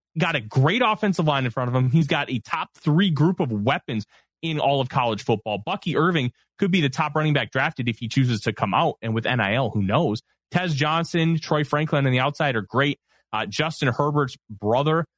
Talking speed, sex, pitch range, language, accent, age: 215 wpm, male, 130-200 Hz, English, American, 30-49